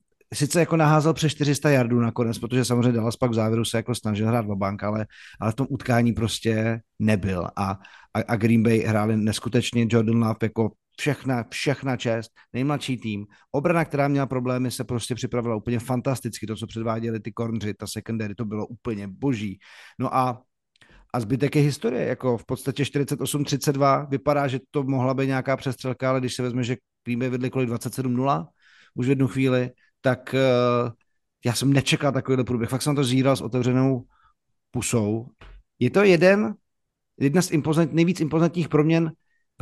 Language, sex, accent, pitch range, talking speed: Czech, male, native, 115-140 Hz, 170 wpm